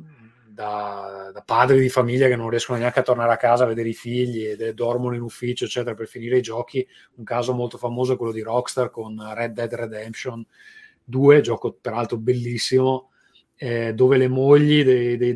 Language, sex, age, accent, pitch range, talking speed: Italian, male, 30-49, native, 120-135 Hz, 190 wpm